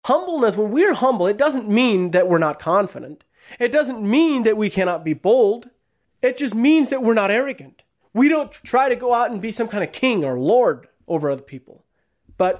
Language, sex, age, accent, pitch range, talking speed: English, male, 30-49, American, 155-240 Hz, 210 wpm